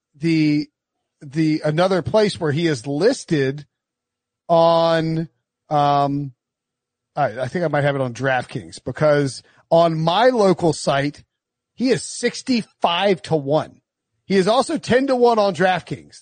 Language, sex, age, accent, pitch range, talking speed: English, male, 40-59, American, 150-230 Hz, 135 wpm